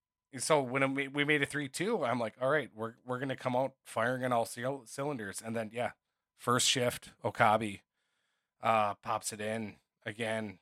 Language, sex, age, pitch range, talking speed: English, male, 20-39, 110-140 Hz, 185 wpm